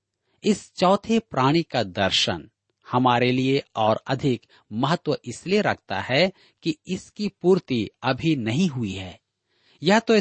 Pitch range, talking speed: 115-165 Hz, 130 wpm